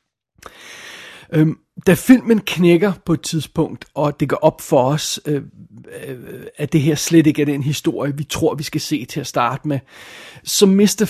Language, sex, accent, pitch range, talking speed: Danish, male, native, 145-175 Hz, 170 wpm